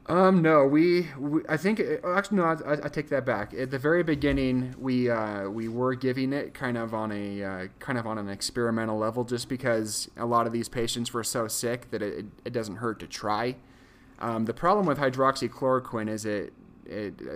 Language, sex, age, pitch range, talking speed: English, male, 30-49, 105-125 Hz, 205 wpm